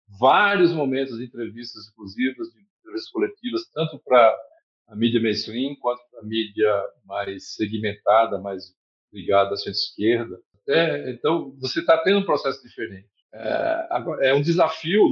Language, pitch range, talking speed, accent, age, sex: Portuguese, 115-180 Hz, 140 wpm, Brazilian, 50-69, male